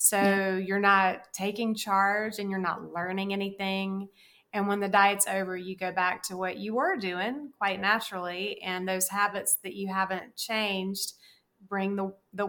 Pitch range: 190-220 Hz